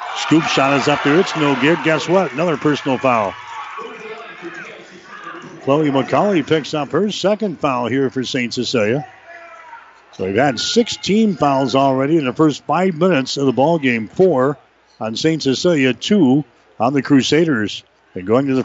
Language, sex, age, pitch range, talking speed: English, male, 60-79, 125-150 Hz, 165 wpm